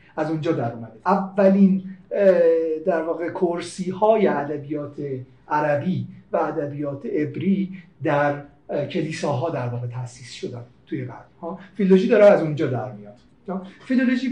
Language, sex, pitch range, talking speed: Persian, male, 160-210 Hz, 125 wpm